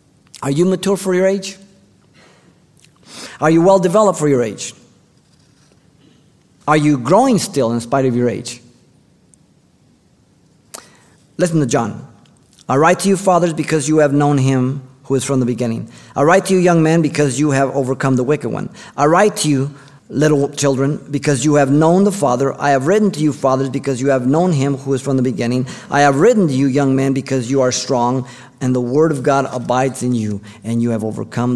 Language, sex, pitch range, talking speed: English, male, 125-155 Hz, 200 wpm